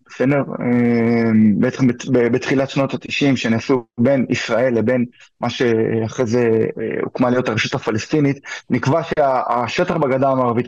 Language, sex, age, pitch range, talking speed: Hebrew, male, 20-39, 115-145 Hz, 120 wpm